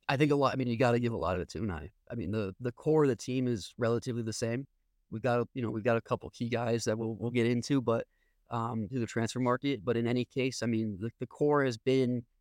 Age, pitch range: 30-49, 110-125 Hz